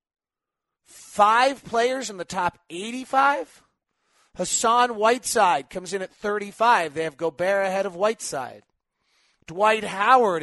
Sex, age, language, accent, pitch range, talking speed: male, 30-49, English, American, 165-235 Hz, 115 wpm